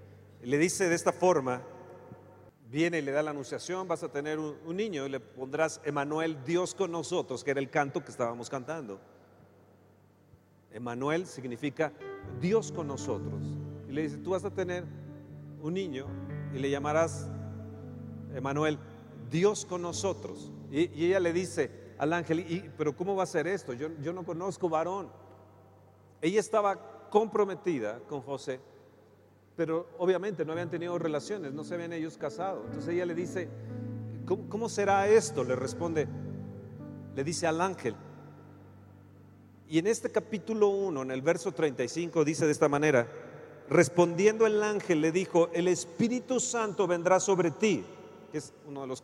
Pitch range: 125-180 Hz